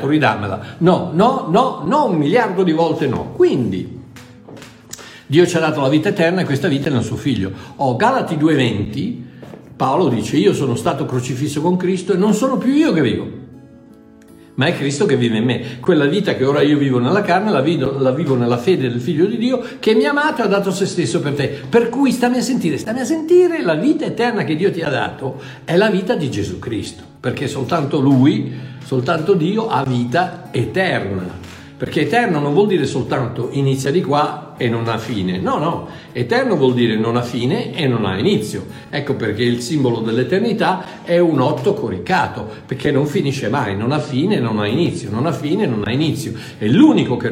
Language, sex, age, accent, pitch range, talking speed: Italian, male, 60-79, native, 130-185 Hz, 205 wpm